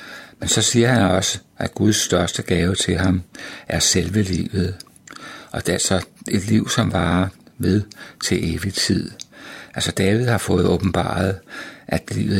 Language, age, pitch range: Danish, 60-79, 90-105 Hz